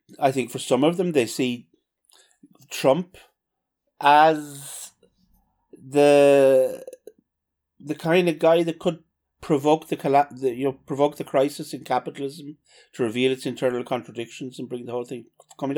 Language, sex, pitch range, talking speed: English, male, 110-155 Hz, 145 wpm